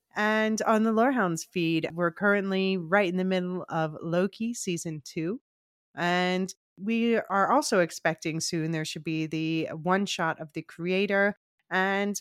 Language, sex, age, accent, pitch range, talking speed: English, female, 30-49, American, 160-205 Hz, 150 wpm